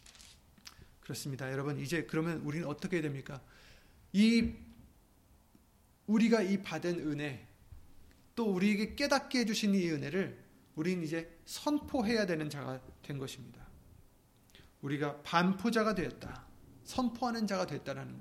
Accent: native